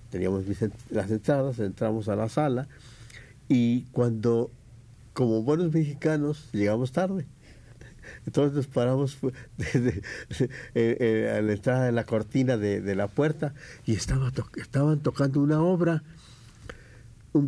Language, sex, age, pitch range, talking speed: Spanish, male, 60-79, 115-145 Hz, 135 wpm